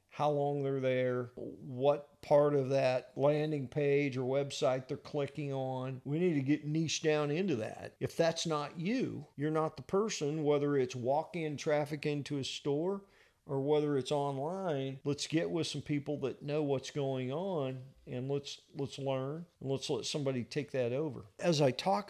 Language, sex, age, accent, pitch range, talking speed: English, male, 40-59, American, 130-150 Hz, 180 wpm